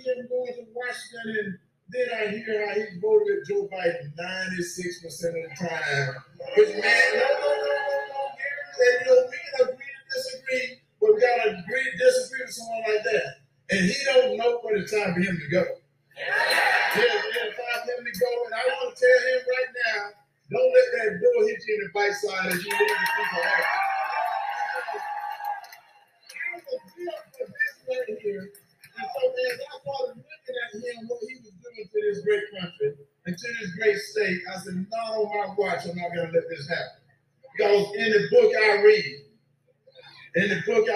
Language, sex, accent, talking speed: English, male, American, 190 wpm